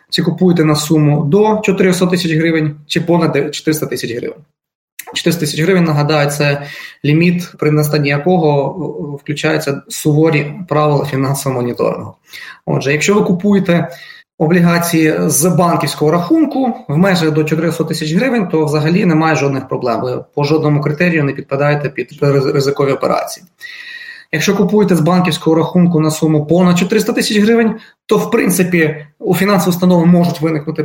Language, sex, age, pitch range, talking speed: Ukrainian, male, 20-39, 150-180 Hz, 145 wpm